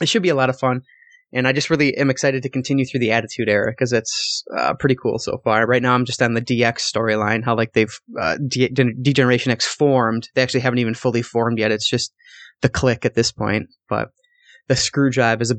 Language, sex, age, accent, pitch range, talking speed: English, male, 20-39, American, 120-180 Hz, 240 wpm